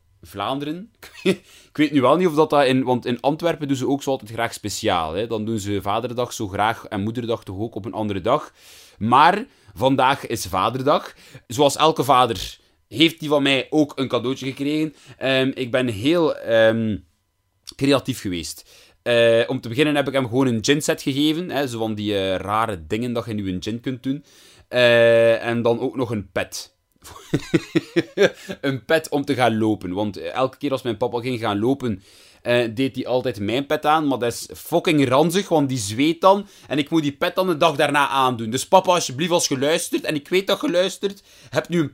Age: 30-49